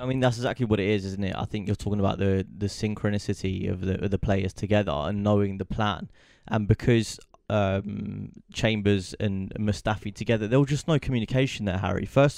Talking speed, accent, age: 200 wpm, British, 20-39